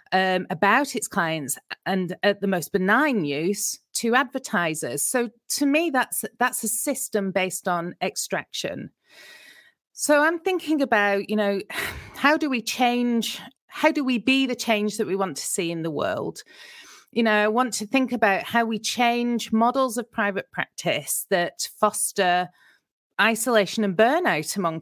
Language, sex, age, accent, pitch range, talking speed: English, female, 30-49, British, 185-245 Hz, 160 wpm